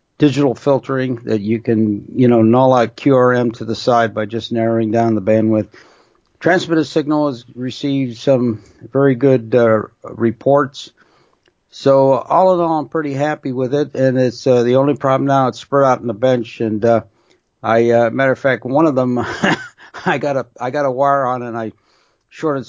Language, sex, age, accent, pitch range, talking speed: English, male, 60-79, American, 115-135 Hz, 190 wpm